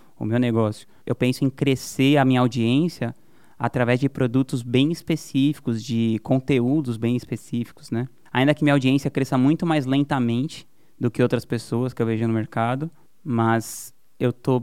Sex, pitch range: male, 120-140 Hz